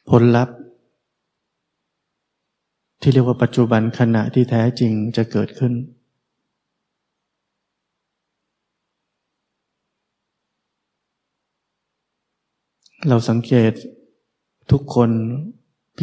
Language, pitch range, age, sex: Thai, 110-125 Hz, 20-39, male